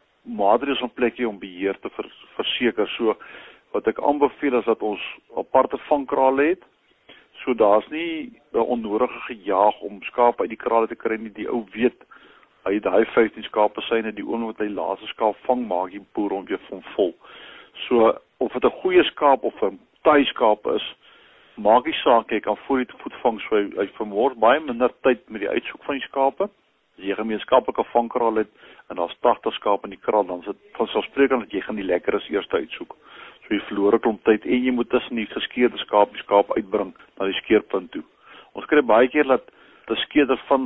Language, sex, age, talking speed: Swedish, male, 60-79, 205 wpm